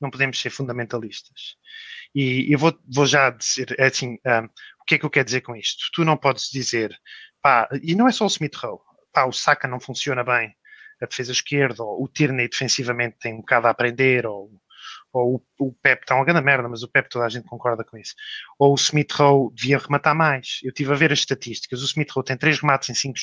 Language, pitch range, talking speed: Portuguese, 125-150 Hz, 220 wpm